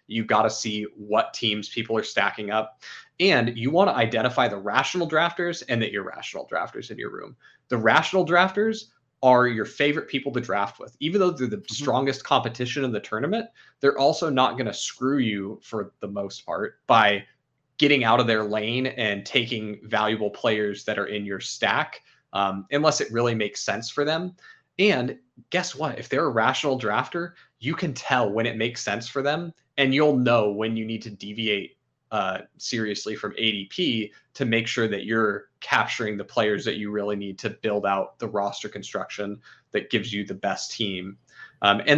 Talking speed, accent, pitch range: 190 wpm, American, 105-140 Hz